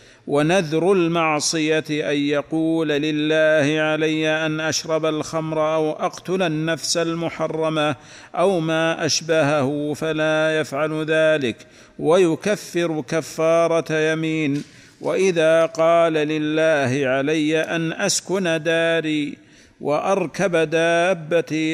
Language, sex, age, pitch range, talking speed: Arabic, male, 50-69, 155-165 Hz, 85 wpm